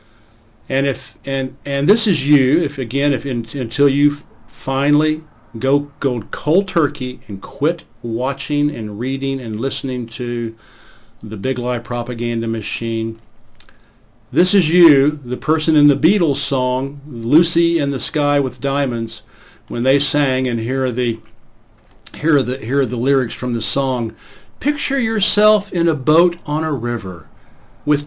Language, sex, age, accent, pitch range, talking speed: English, male, 50-69, American, 115-155 Hz, 155 wpm